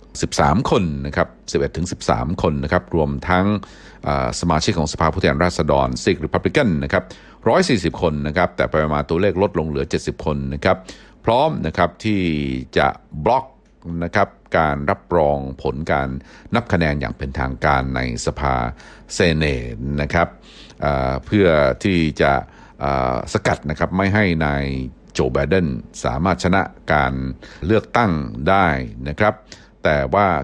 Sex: male